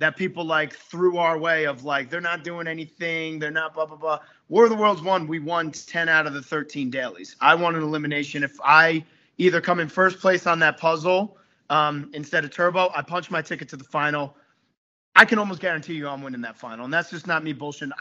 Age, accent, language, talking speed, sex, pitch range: 30-49, American, English, 235 wpm, male, 145-175 Hz